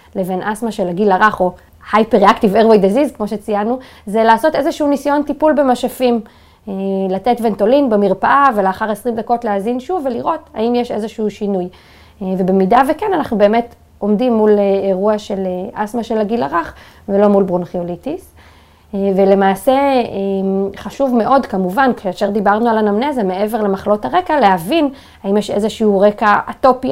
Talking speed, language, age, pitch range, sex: 140 wpm, Hebrew, 20-39, 195-245 Hz, female